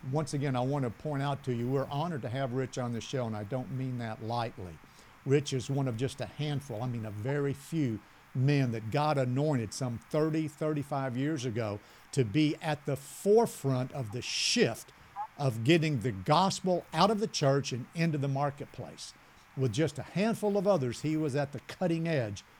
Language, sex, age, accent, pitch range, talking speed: English, male, 50-69, American, 130-160 Hz, 200 wpm